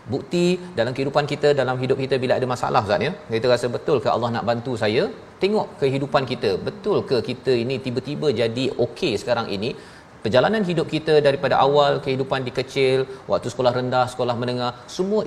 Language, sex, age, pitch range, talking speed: Malayalam, male, 40-59, 120-145 Hz, 180 wpm